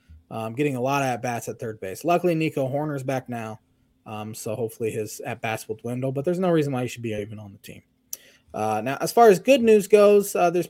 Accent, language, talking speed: American, English, 240 wpm